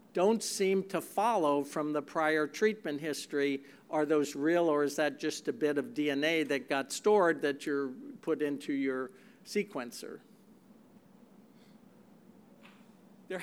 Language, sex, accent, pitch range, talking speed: English, male, American, 155-205 Hz, 140 wpm